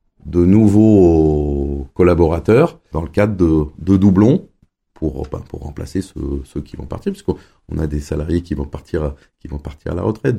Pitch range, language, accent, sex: 75-95 Hz, French, French, male